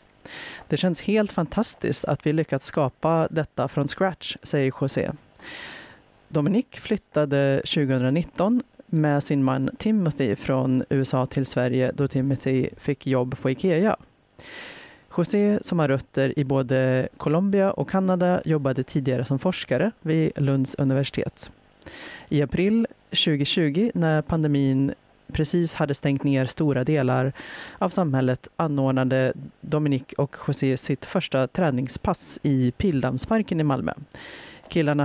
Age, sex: 30-49, female